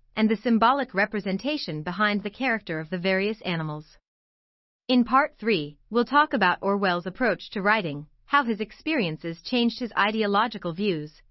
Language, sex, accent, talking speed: English, female, American, 150 wpm